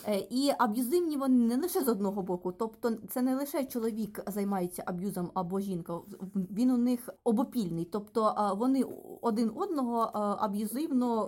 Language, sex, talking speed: Ukrainian, female, 140 wpm